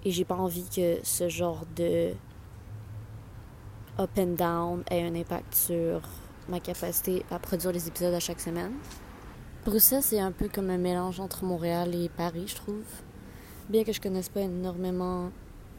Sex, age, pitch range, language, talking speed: female, 20-39, 170-185 Hz, French, 165 wpm